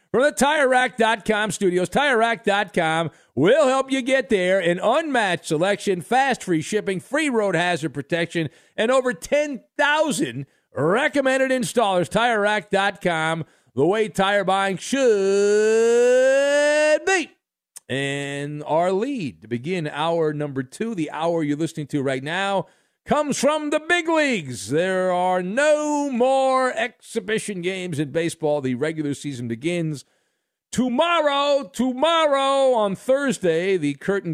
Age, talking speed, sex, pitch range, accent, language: 50-69, 120 wpm, male, 150-245 Hz, American, English